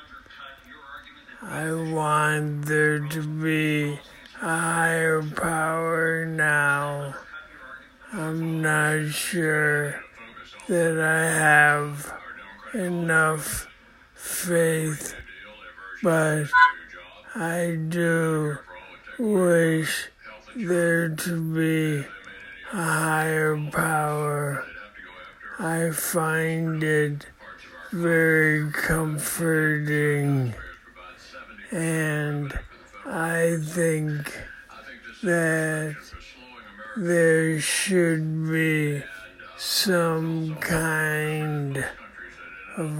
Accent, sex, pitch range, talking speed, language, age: American, male, 150-165 Hz, 60 wpm, English, 60-79